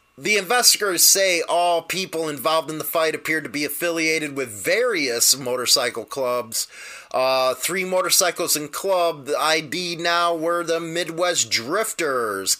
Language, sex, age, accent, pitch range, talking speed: English, male, 30-49, American, 140-175 Hz, 140 wpm